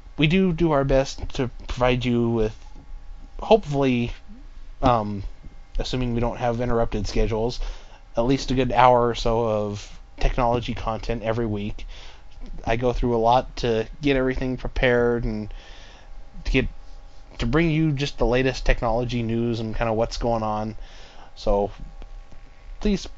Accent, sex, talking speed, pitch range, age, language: American, male, 150 wpm, 110-130 Hz, 20-39, English